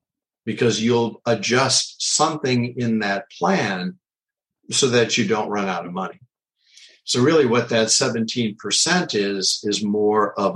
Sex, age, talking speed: male, 50-69, 135 wpm